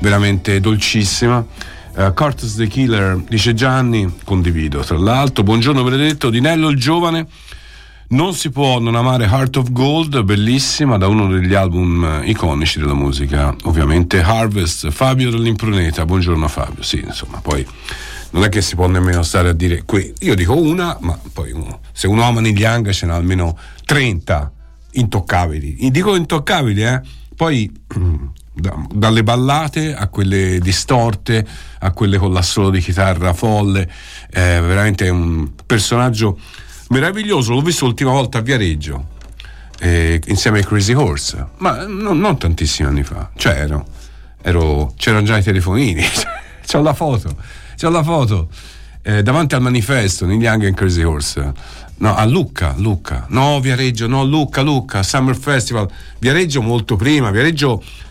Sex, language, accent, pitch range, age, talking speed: male, Italian, native, 85-125 Hz, 50-69, 145 wpm